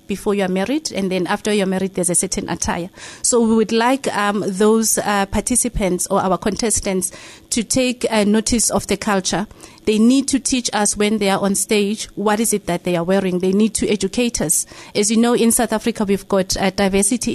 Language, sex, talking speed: English, female, 215 wpm